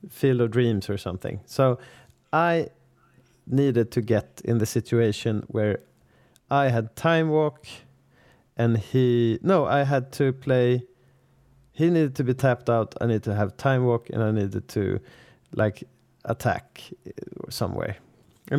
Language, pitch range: English, 115-140 Hz